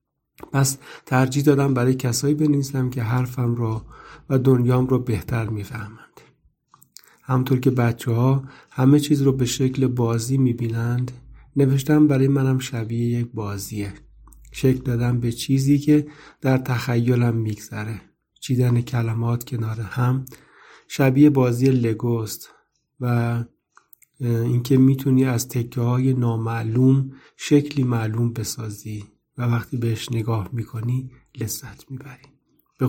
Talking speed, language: 120 wpm, Persian